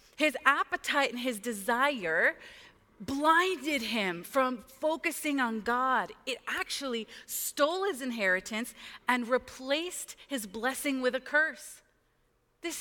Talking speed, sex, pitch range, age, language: 110 wpm, female, 230-285 Hz, 30-49, English